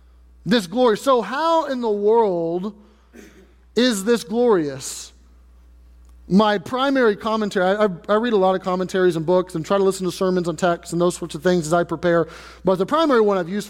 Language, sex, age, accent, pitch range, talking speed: English, male, 30-49, American, 135-205 Hz, 195 wpm